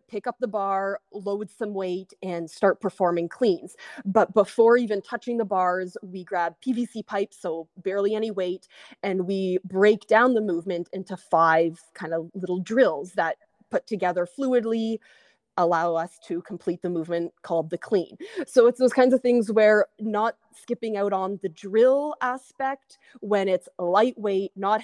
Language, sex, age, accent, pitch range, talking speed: English, female, 20-39, American, 185-225 Hz, 165 wpm